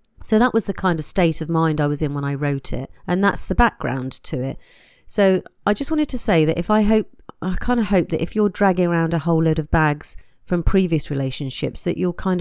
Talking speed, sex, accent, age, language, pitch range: 250 wpm, female, British, 40-59, English, 145-185 Hz